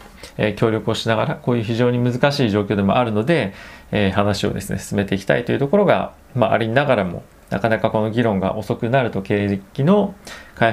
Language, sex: Japanese, male